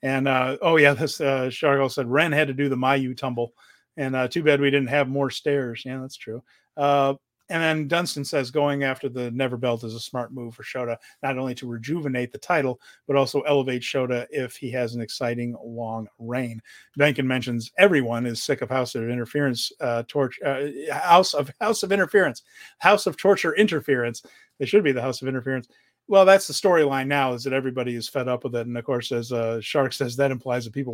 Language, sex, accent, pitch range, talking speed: English, male, American, 125-150 Hz, 215 wpm